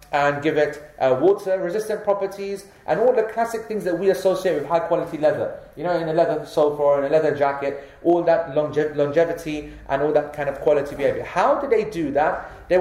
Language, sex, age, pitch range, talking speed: English, male, 30-49, 150-190 Hz, 220 wpm